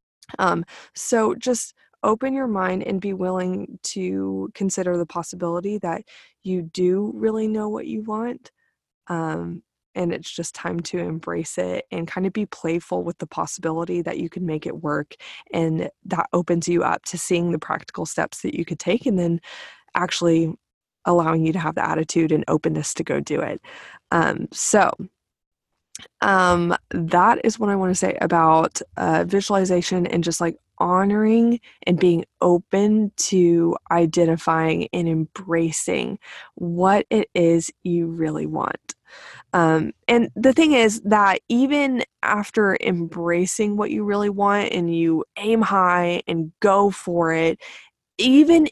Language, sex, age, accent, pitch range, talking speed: English, female, 20-39, American, 170-210 Hz, 155 wpm